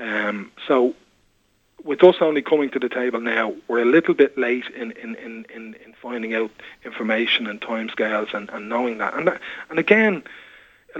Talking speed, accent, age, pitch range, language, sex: 185 wpm, Irish, 30-49, 120-150 Hz, English, male